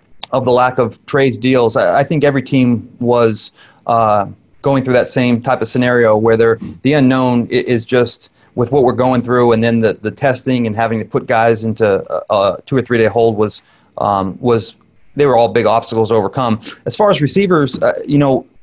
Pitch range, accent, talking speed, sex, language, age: 110-125 Hz, American, 210 wpm, male, English, 30-49